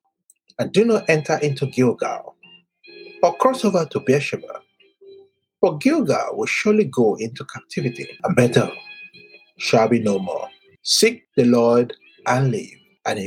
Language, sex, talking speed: English, male, 140 wpm